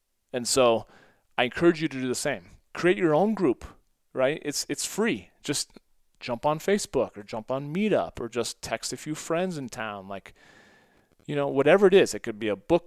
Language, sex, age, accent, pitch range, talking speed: English, male, 30-49, American, 110-140 Hz, 205 wpm